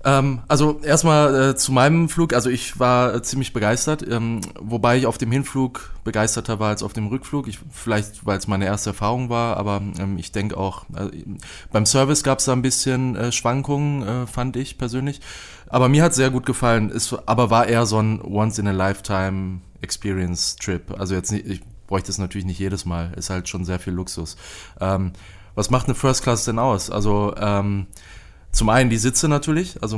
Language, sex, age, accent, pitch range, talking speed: German, male, 20-39, German, 100-125 Hz, 195 wpm